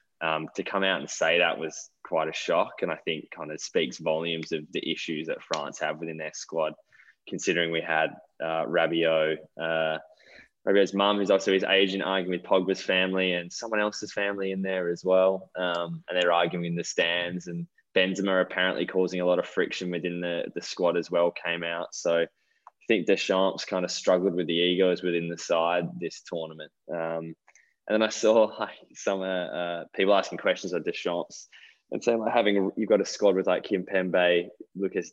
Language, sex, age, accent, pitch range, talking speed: English, male, 20-39, Australian, 80-95 Hz, 200 wpm